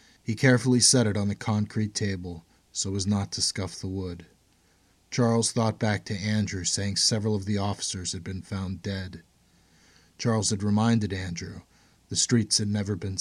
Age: 30-49